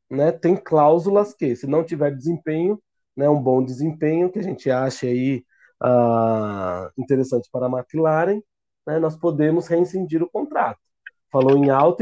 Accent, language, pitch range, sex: Brazilian, Portuguese, 130-175 Hz, male